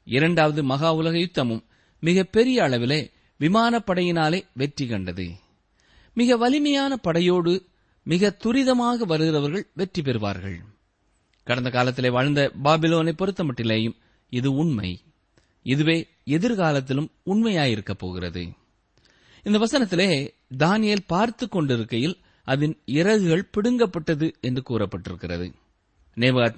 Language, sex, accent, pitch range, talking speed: Tamil, male, native, 115-185 Hz, 90 wpm